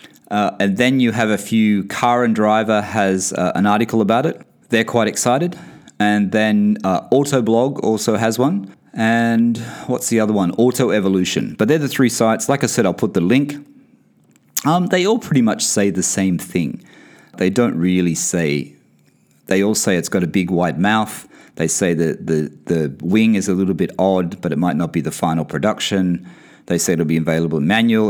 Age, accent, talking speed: 30-49, Australian, 195 wpm